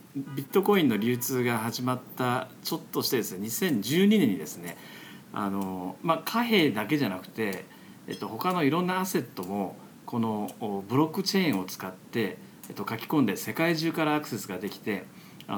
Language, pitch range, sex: Japanese, 105-165 Hz, male